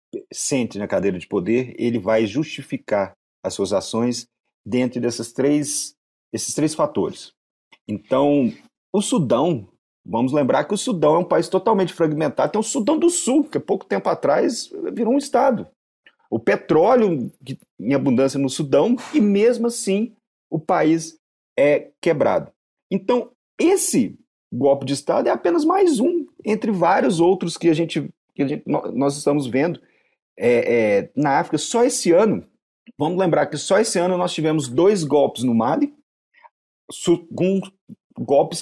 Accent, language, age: Brazilian, Portuguese, 40-59